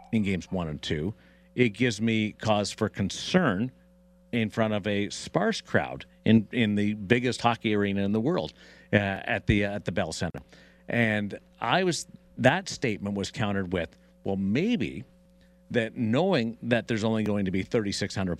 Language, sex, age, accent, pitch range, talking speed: English, male, 50-69, American, 100-125 Hz, 175 wpm